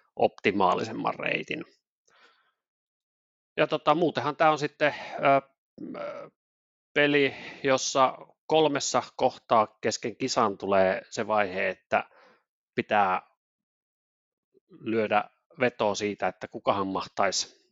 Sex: male